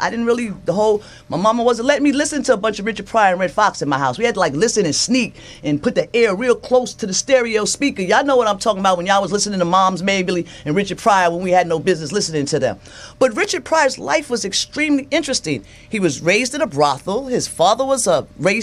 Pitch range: 175-250 Hz